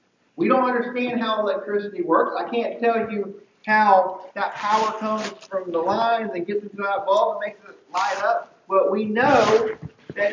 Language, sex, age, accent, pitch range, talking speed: English, male, 40-59, American, 200-245 Hz, 180 wpm